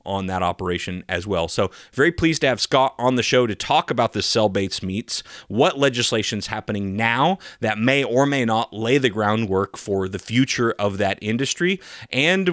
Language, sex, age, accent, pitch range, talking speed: English, male, 30-49, American, 105-130 Hz, 185 wpm